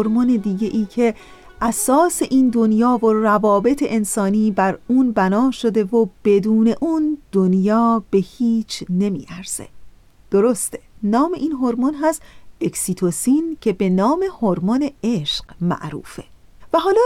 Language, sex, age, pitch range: Persian, female, 40-59, 195-265 Hz